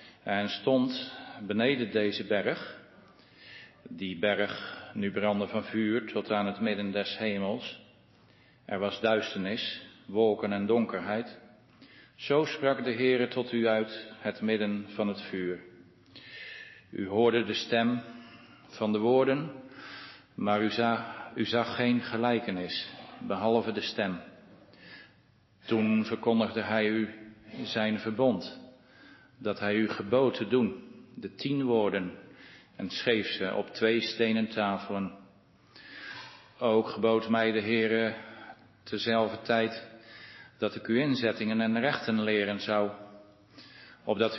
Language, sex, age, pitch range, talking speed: Dutch, male, 50-69, 105-115 Hz, 120 wpm